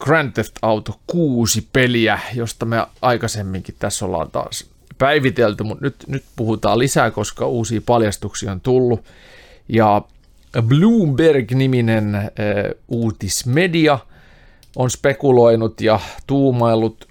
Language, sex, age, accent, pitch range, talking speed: Finnish, male, 30-49, native, 100-125 Hz, 100 wpm